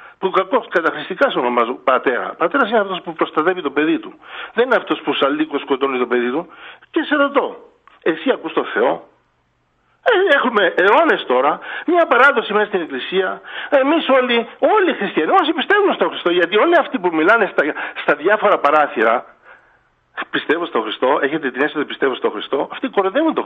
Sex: male